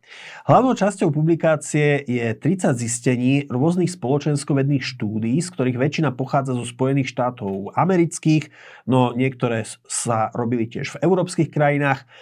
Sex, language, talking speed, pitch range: male, Slovak, 125 wpm, 120-145 Hz